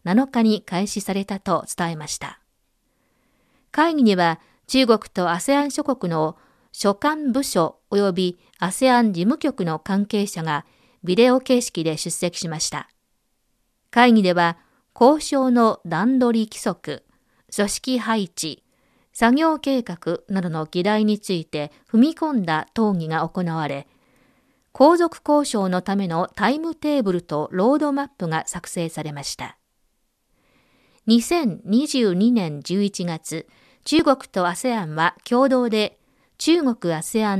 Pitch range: 175-255 Hz